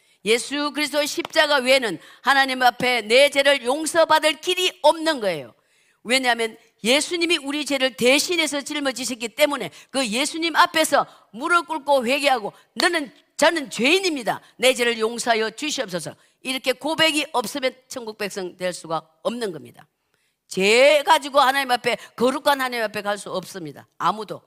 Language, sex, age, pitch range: Korean, female, 50-69, 200-290 Hz